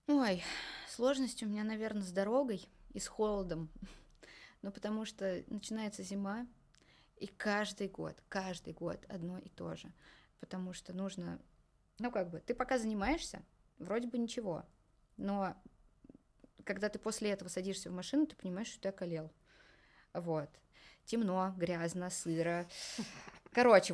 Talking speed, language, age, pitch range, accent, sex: 135 wpm, Russian, 20-39, 180-230 Hz, native, female